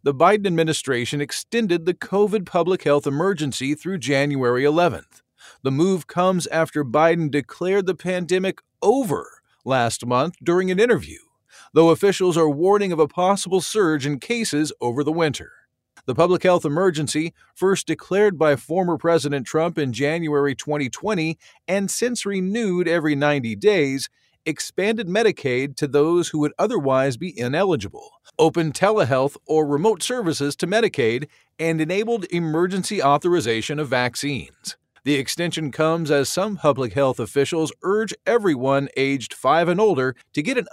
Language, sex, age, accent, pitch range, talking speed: English, male, 50-69, American, 140-185 Hz, 145 wpm